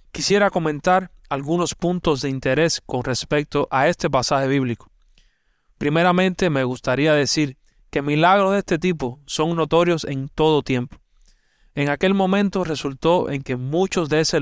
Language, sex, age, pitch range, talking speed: Spanish, male, 30-49, 135-175 Hz, 145 wpm